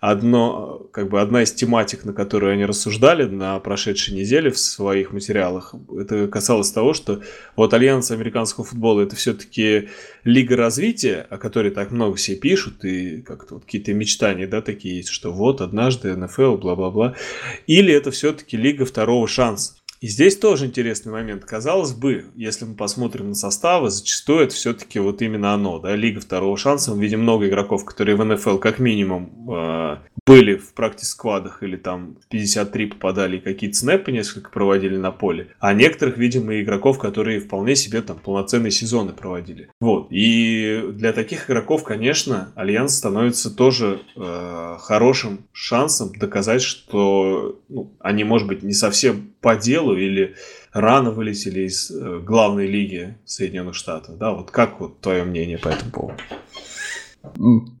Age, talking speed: 20-39, 150 wpm